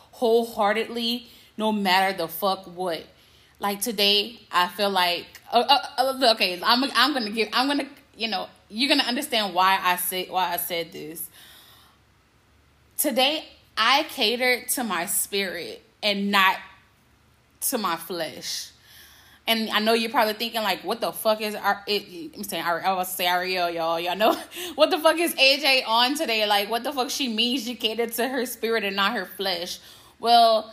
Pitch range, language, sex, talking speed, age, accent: 190-240 Hz, English, female, 175 wpm, 10-29, American